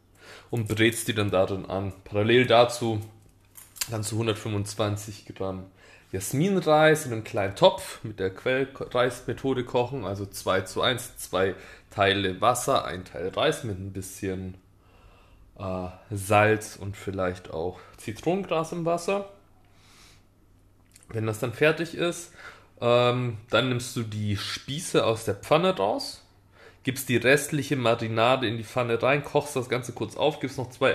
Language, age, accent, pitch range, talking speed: German, 20-39, German, 100-145 Hz, 140 wpm